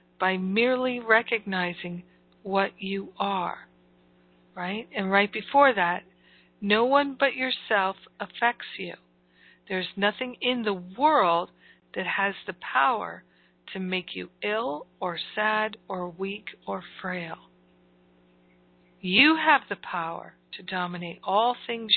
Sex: female